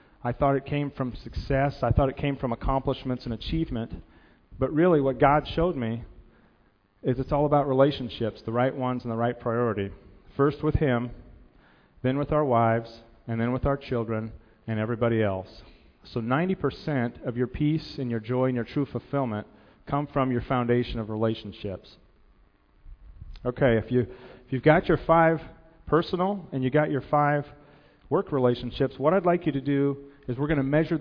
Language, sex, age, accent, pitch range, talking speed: English, male, 40-59, American, 115-145 Hz, 180 wpm